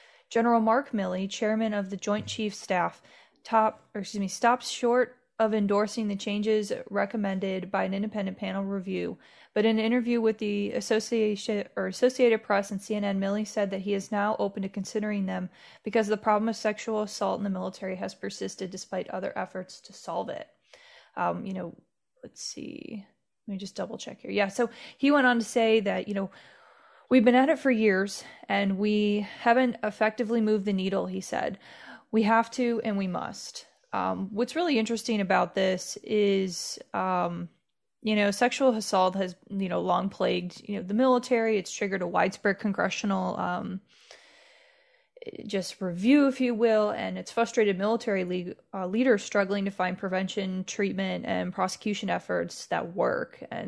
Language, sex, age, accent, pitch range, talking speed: English, female, 20-39, American, 195-230 Hz, 175 wpm